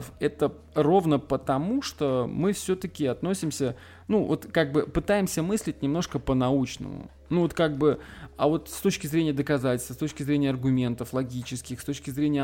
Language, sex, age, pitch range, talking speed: Russian, male, 20-39, 120-145 Hz, 160 wpm